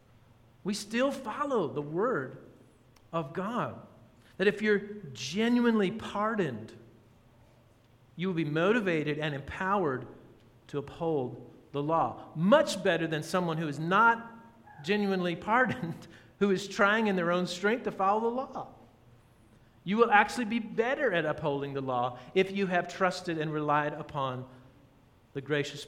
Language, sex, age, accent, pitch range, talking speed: English, male, 40-59, American, 125-205 Hz, 140 wpm